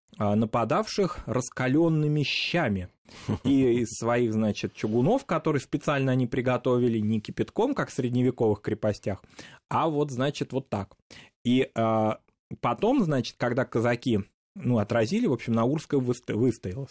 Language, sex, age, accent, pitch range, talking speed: Russian, male, 20-39, native, 110-140 Hz, 120 wpm